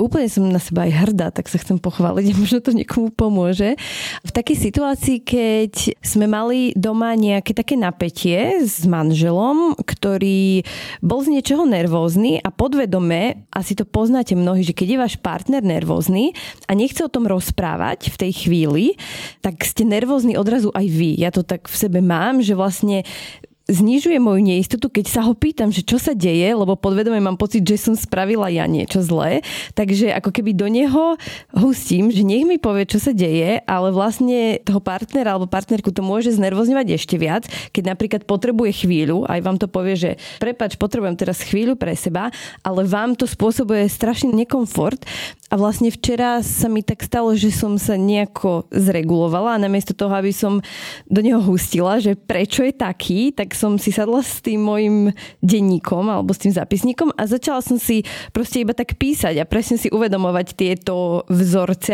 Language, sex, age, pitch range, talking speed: Slovak, female, 20-39, 185-230 Hz, 175 wpm